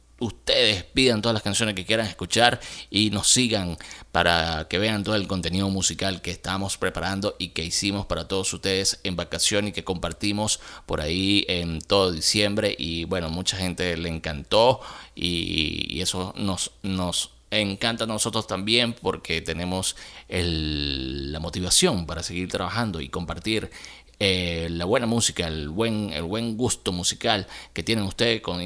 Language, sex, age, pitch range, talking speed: Spanish, male, 30-49, 85-105 Hz, 155 wpm